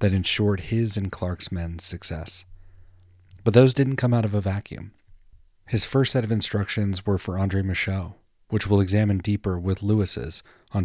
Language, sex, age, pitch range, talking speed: English, male, 30-49, 90-105 Hz, 170 wpm